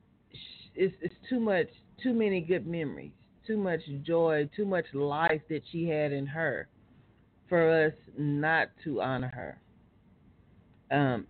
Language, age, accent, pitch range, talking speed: English, 40-59, American, 140-170 Hz, 140 wpm